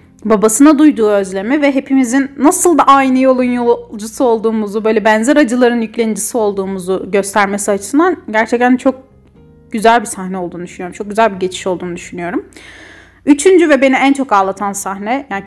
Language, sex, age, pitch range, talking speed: Turkish, female, 30-49, 210-270 Hz, 150 wpm